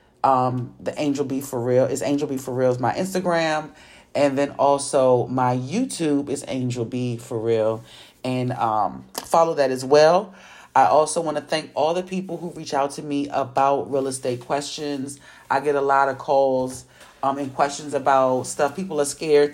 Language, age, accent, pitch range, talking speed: English, 30-49, American, 130-150 Hz, 185 wpm